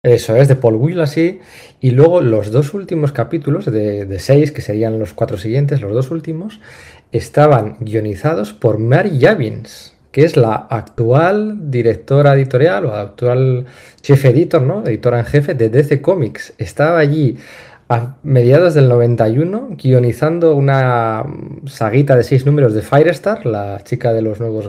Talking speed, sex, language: 155 wpm, male, Spanish